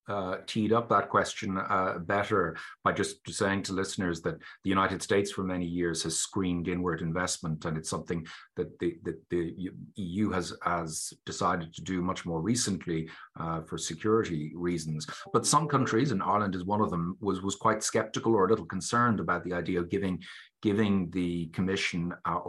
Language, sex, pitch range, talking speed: English, male, 85-100 Hz, 180 wpm